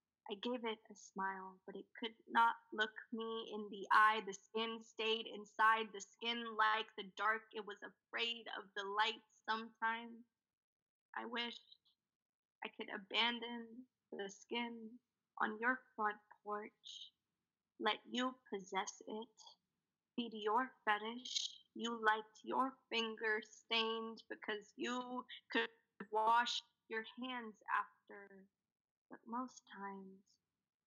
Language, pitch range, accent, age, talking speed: English, 215-235 Hz, American, 20-39, 120 wpm